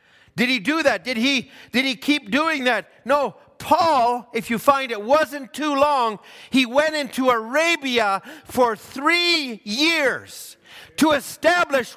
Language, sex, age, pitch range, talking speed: English, male, 50-69, 190-280 Hz, 145 wpm